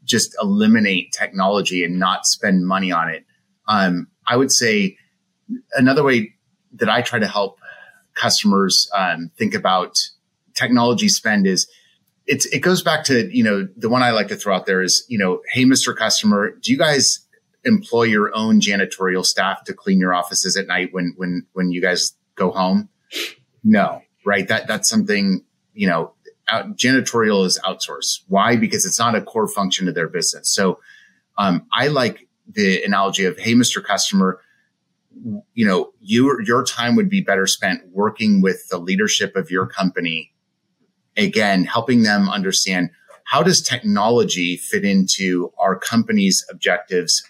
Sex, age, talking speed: male, 30-49, 160 wpm